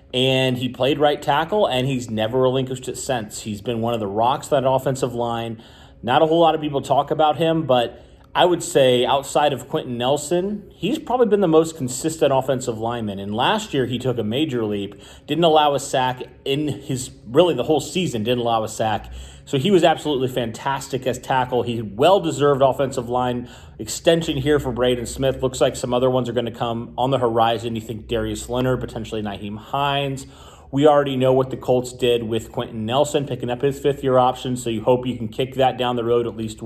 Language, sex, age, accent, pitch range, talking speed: English, male, 30-49, American, 120-145 Hz, 215 wpm